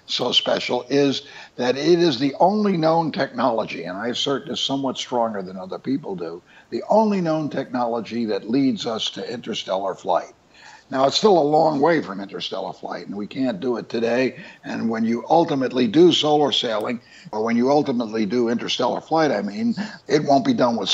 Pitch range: 115-170 Hz